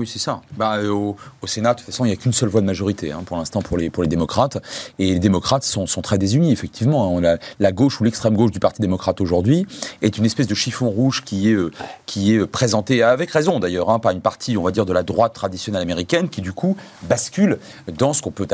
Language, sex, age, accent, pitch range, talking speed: French, male, 30-49, French, 105-145 Hz, 255 wpm